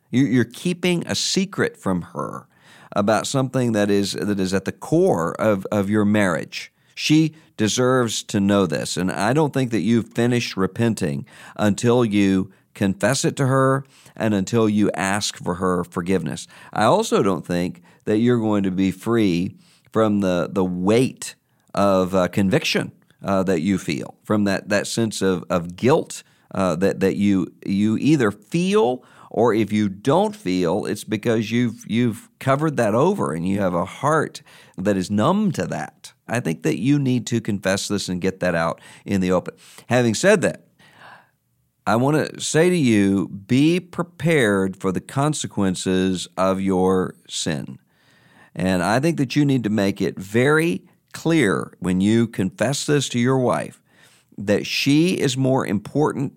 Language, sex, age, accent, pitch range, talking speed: English, male, 50-69, American, 95-130 Hz, 165 wpm